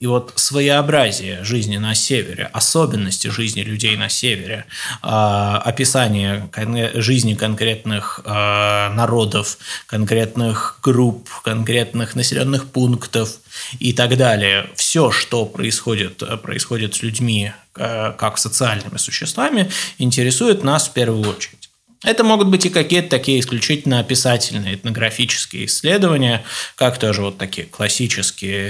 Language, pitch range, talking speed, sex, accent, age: Russian, 105-130 Hz, 110 wpm, male, native, 20-39